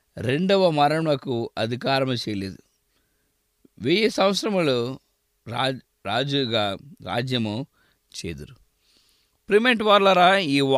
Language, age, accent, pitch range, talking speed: English, 20-39, Indian, 120-195 Hz, 70 wpm